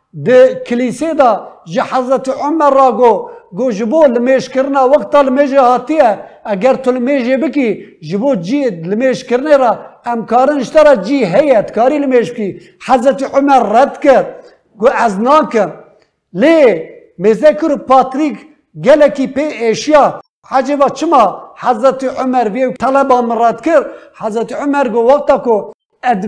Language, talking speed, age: Turkish, 95 wpm, 50-69